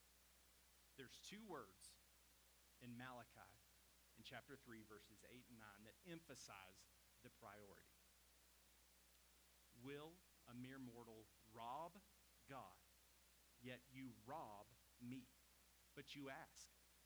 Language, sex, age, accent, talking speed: English, male, 40-59, American, 100 wpm